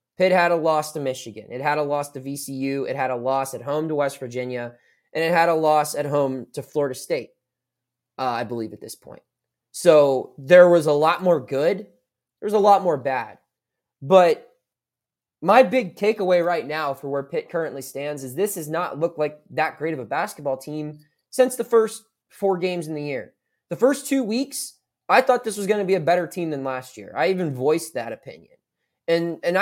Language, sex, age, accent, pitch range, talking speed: English, male, 20-39, American, 140-195 Hz, 215 wpm